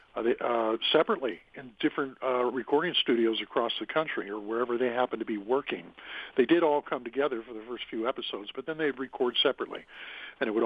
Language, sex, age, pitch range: English, male, 50-69, 115-140 Hz